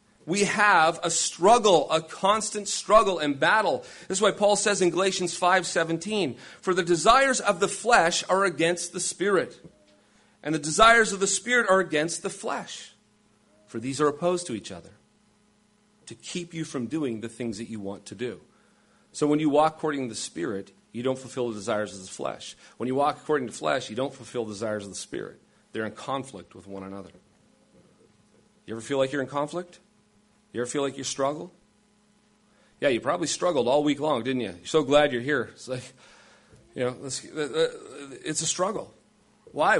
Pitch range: 135-210 Hz